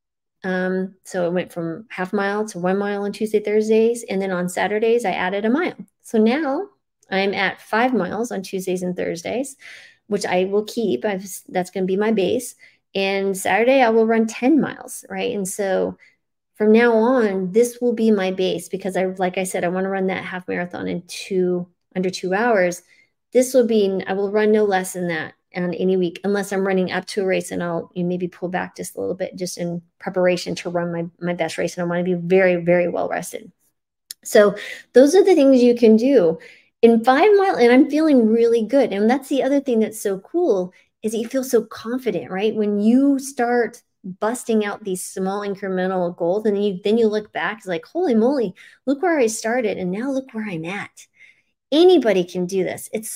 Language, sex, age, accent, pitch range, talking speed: English, female, 30-49, American, 185-235 Hz, 215 wpm